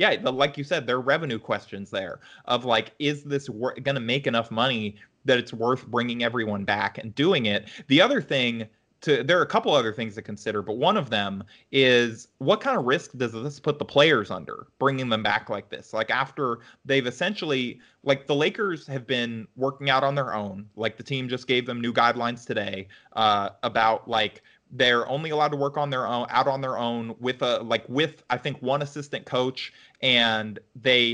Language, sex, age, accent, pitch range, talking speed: English, male, 30-49, American, 110-135 Hz, 205 wpm